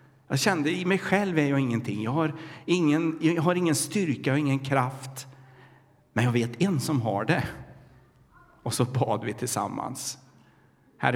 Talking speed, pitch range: 165 wpm, 120-145 Hz